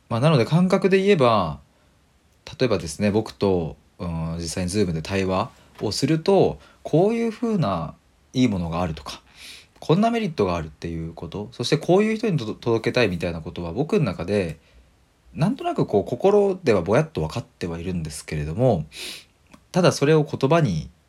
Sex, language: male, Japanese